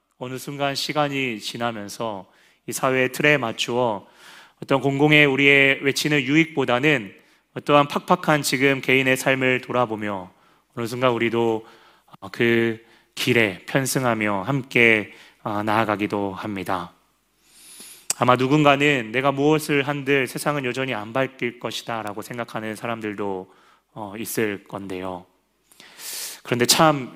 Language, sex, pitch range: Korean, male, 110-140 Hz